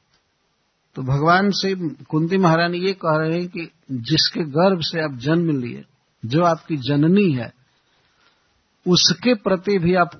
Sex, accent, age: male, native, 50-69